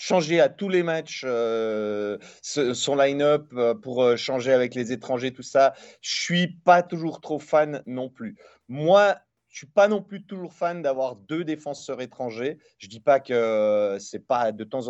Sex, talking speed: male, 195 wpm